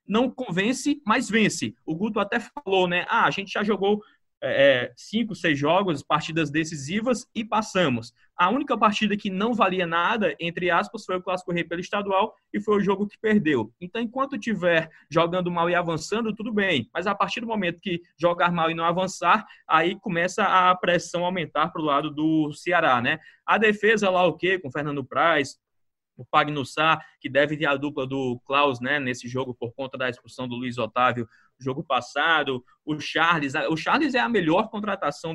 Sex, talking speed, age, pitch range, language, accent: male, 190 wpm, 20-39, 145-195 Hz, Portuguese, Brazilian